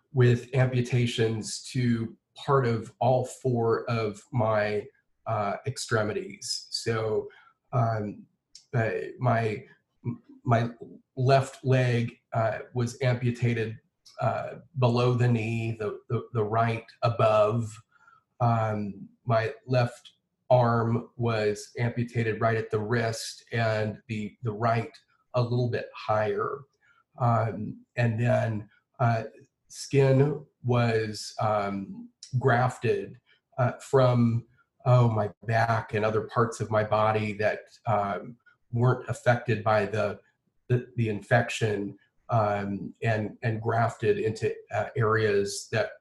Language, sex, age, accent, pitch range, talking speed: English, male, 30-49, American, 110-125 Hz, 110 wpm